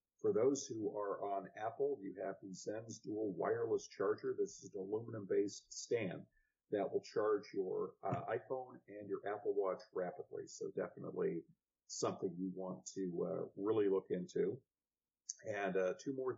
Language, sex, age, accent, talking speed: English, male, 50-69, American, 160 wpm